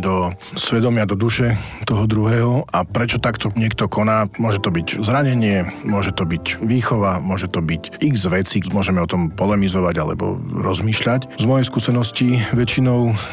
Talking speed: 155 wpm